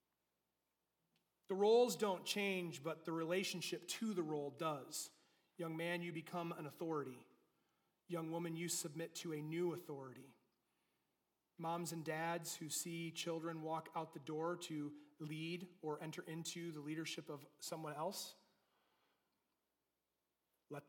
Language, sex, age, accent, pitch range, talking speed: English, male, 30-49, American, 150-175 Hz, 130 wpm